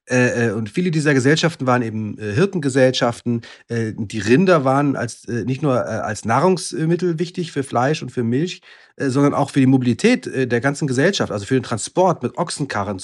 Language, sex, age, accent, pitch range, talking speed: German, male, 40-59, German, 115-160 Hz, 155 wpm